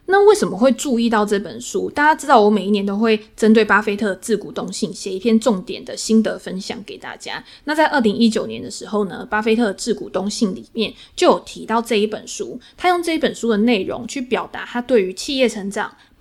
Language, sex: Chinese, female